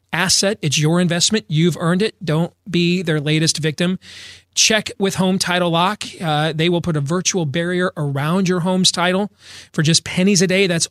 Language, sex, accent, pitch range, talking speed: English, male, American, 145-190 Hz, 185 wpm